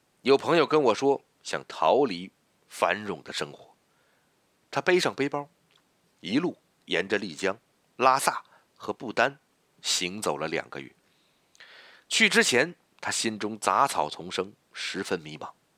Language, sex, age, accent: Chinese, male, 50-69, native